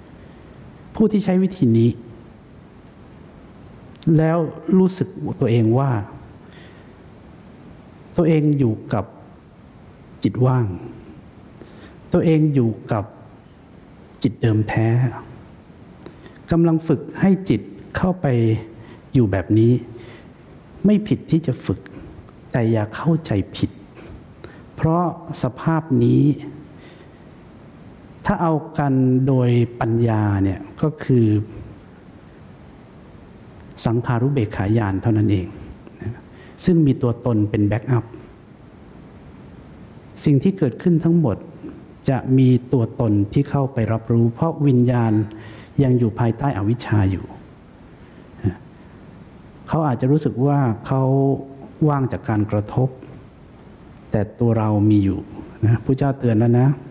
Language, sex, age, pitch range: English, male, 60-79, 110-145 Hz